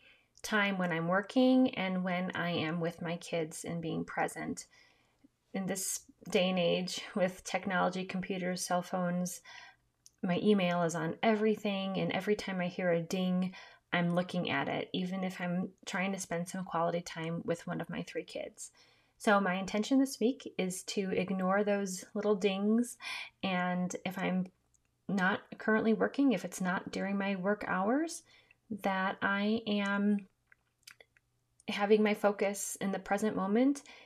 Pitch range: 180-215 Hz